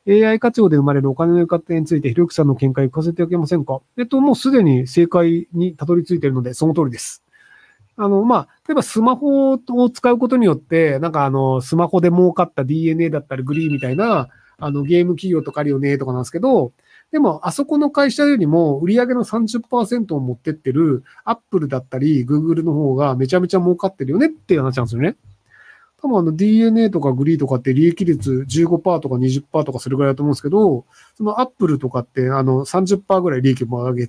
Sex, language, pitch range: male, Japanese, 135-195 Hz